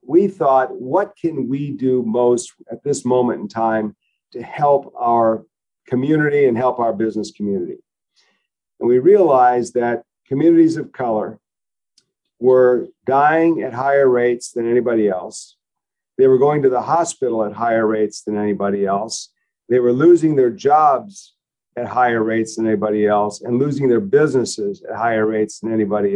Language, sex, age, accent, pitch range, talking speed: English, male, 50-69, American, 110-155 Hz, 155 wpm